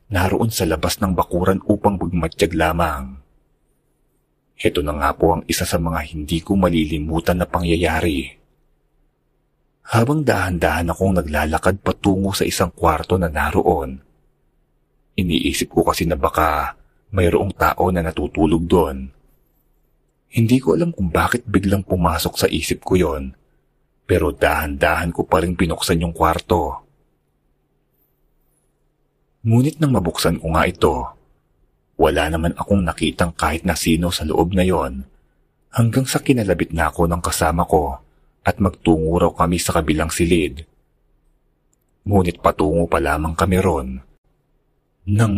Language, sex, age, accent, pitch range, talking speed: Filipino, male, 40-59, native, 80-95 Hz, 130 wpm